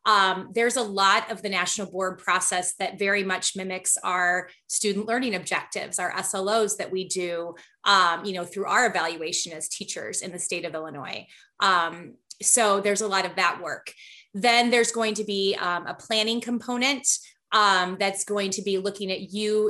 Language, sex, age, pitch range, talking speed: English, female, 30-49, 180-215 Hz, 185 wpm